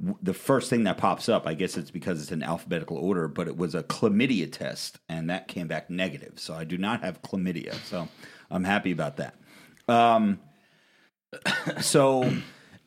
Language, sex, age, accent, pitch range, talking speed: English, male, 30-49, American, 90-110 Hz, 175 wpm